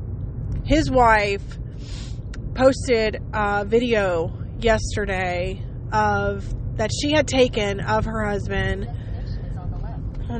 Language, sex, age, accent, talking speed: English, female, 20-39, American, 90 wpm